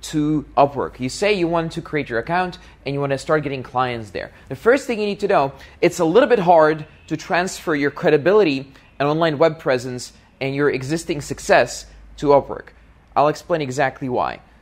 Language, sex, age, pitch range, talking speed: English, male, 20-39, 130-170 Hz, 195 wpm